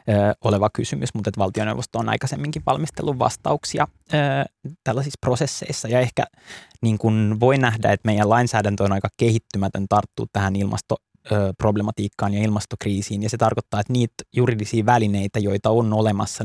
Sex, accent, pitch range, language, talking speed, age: male, native, 100-115 Hz, Finnish, 130 wpm, 20-39